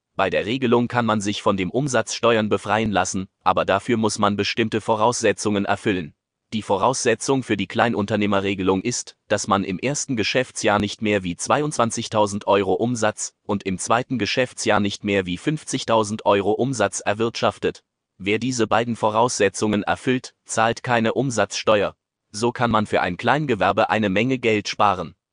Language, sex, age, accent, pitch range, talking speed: German, male, 30-49, German, 100-120 Hz, 150 wpm